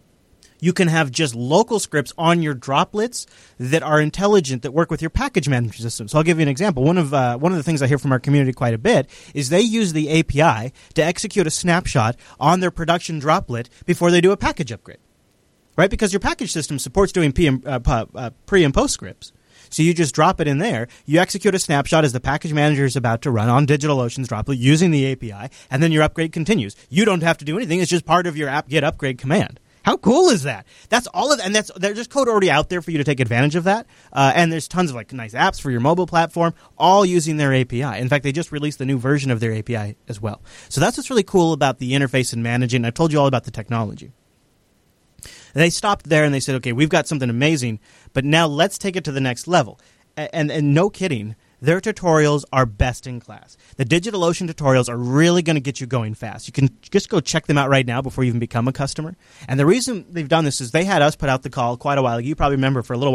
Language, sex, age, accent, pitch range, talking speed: English, male, 30-49, American, 130-170 Hz, 255 wpm